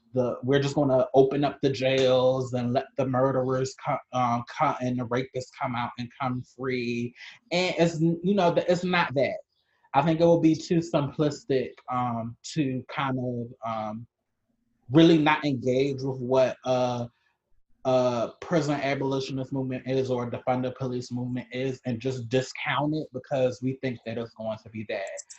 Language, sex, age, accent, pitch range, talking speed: English, male, 20-39, American, 130-165 Hz, 170 wpm